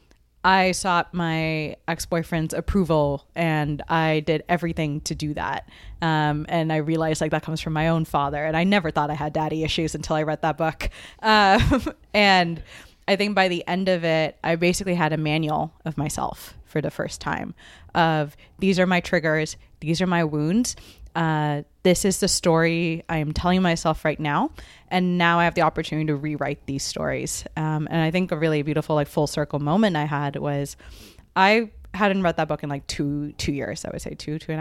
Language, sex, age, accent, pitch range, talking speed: English, female, 20-39, American, 150-180 Hz, 200 wpm